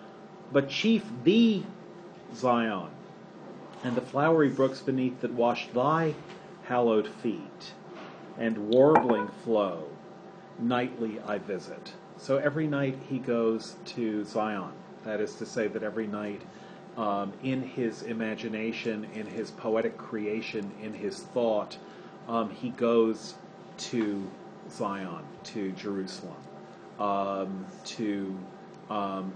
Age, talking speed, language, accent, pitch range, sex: 40-59, 110 wpm, English, American, 110-155 Hz, male